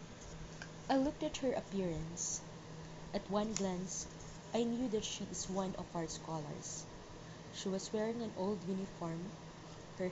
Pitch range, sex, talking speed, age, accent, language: 160-210 Hz, female, 140 wpm, 20-39, Filipino, English